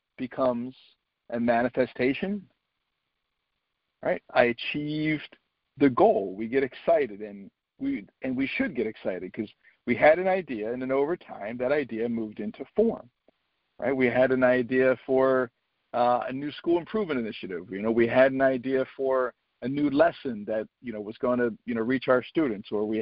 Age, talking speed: 50-69, 175 wpm